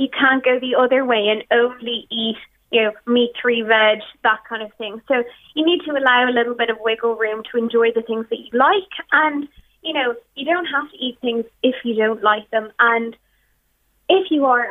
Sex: female